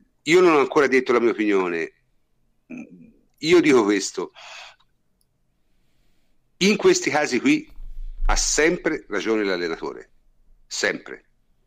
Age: 50-69